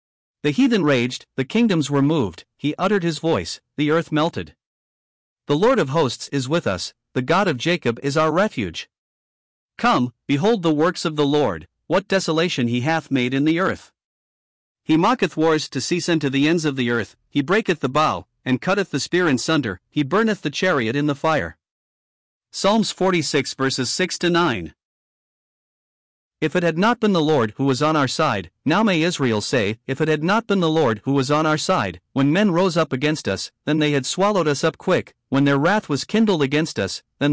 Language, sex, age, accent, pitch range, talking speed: English, male, 50-69, American, 135-175 Hz, 205 wpm